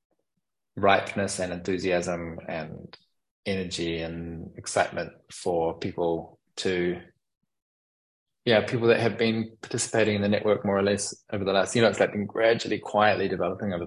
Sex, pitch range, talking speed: male, 80-100 Hz, 145 wpm